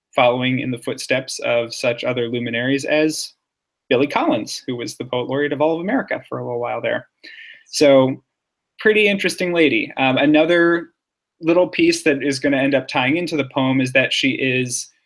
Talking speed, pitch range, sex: 185 wpm, 120-145 Hz, male